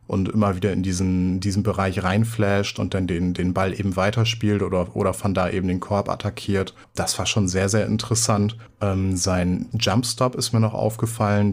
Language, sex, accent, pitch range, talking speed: German, male, German, 95-110 Hz, 185 wpm